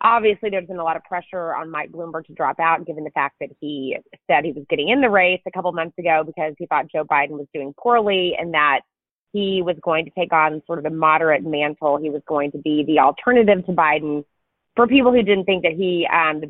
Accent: American